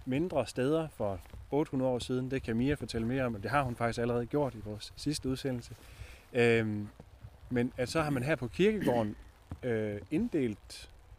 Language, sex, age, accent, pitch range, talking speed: Danish, male, 30-49, native, 100-130 Hz, 180 wpm